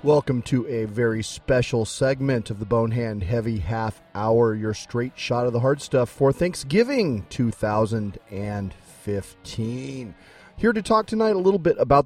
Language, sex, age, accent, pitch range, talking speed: English, male, 30-49, American, 105-145 Hz, 155 wpm